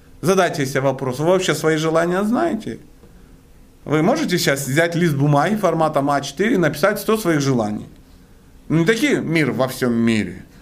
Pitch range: 110-160 Hz